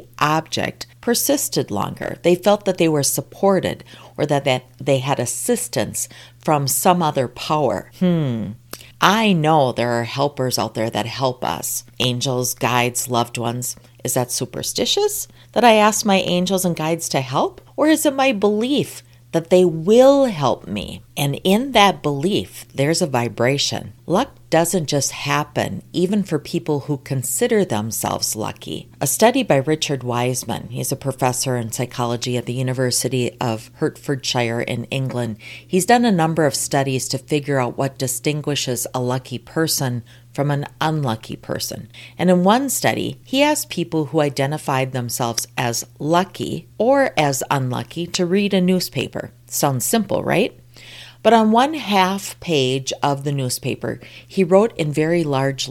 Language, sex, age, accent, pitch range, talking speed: English, female, 40-59, American, 125-175 Hz, 155 wpm